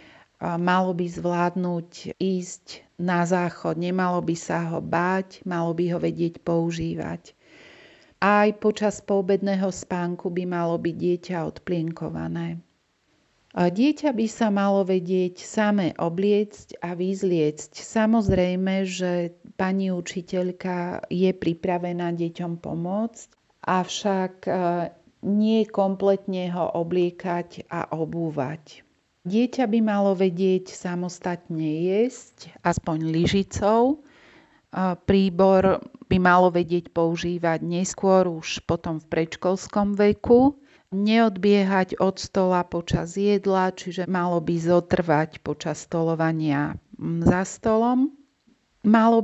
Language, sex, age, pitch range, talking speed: Slovak, female, 40-59, 170-195 Hz, 100 wpm